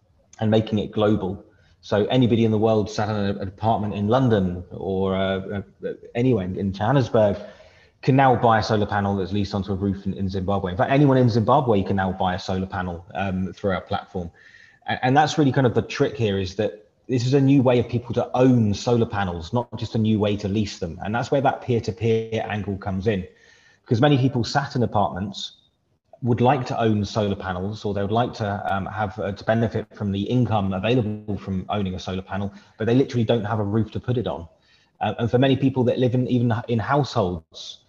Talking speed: 225 wpm